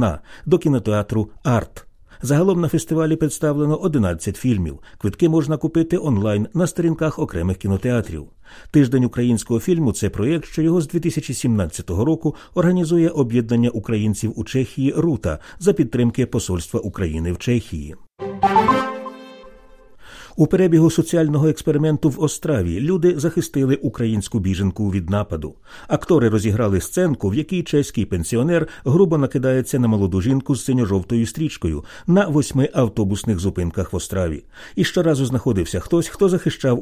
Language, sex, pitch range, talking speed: Ukrainian, male, 100-155 Hz, 125 wpm